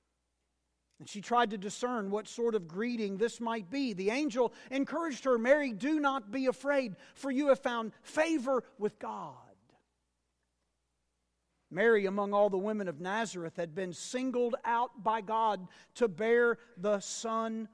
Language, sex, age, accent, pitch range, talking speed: English, male, 50-69, American, 190-240 Hz, 150 wpm